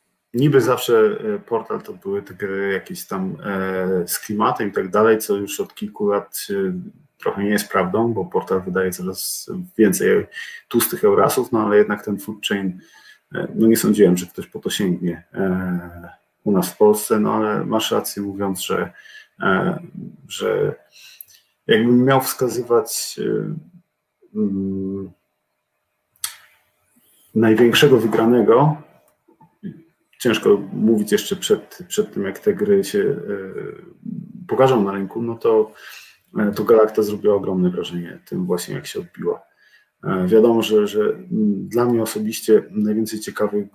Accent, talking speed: native, 130 wpm